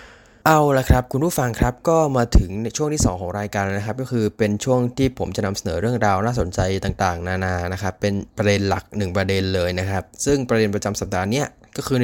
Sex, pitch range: male, 105-125 Hz